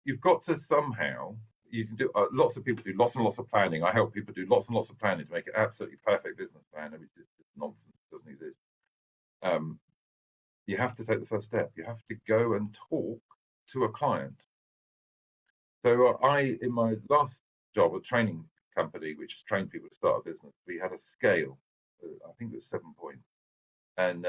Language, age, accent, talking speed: English, 50-69, British, 210 wpm